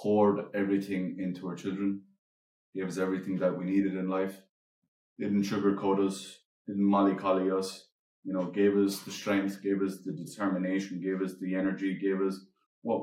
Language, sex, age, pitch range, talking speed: English, male, 20-39, 90-100 Hz, 165 wpm